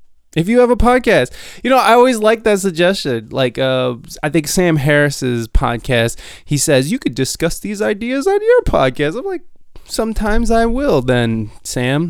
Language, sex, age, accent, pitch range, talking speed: English, male, 20-39, American, 125-180 Hz, 180 wpm